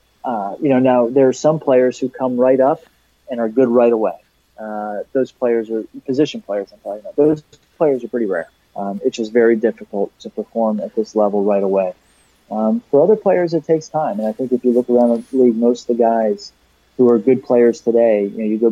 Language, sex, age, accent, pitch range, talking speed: English, male, 30-49, American, 110-130 Hz, 230 wpm